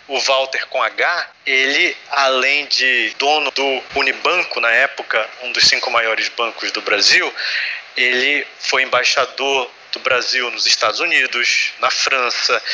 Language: Portuguese